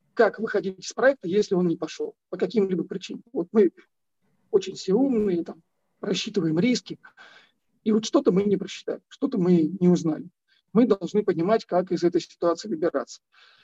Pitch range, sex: 180-225 Hz, male